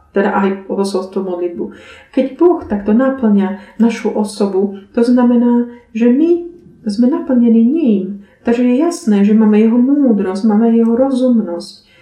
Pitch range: 190-245 Hz